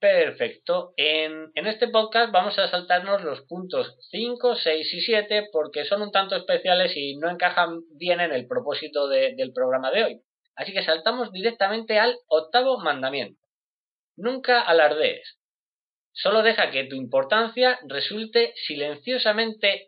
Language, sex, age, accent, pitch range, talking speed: Spanish, male, 20-39, Spanish, 165-235 Hz, 140 wpm